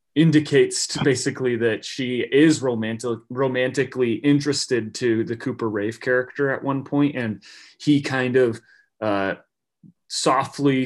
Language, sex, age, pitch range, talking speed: English, male, 30-49, 115-140 Hz, 125 wpm